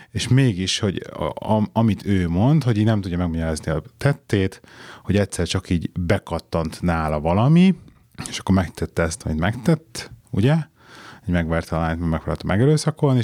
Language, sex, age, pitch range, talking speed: Hungarian, male, 30-49, 90-110 Hz, 150 wpm